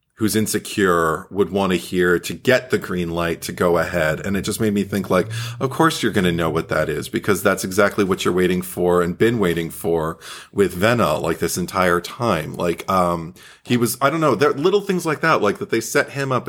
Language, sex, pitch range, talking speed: English, male, 95-125 Hz, 235 wpm